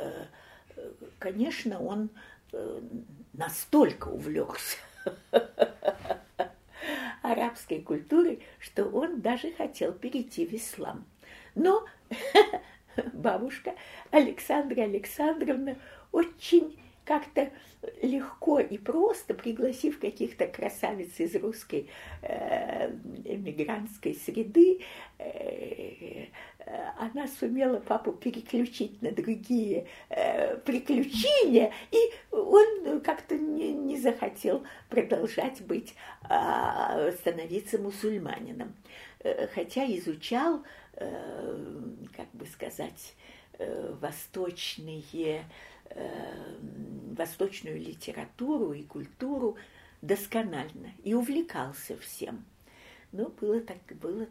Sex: female